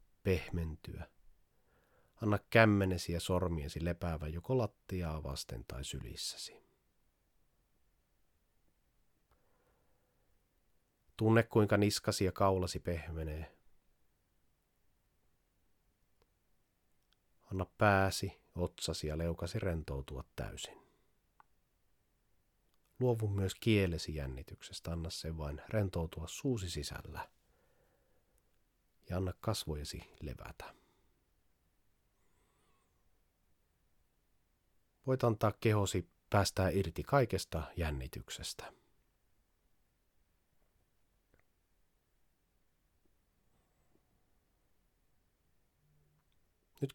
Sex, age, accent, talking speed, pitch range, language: male, 30-49, native, 60 wpm, 80-105 Hz, Finnish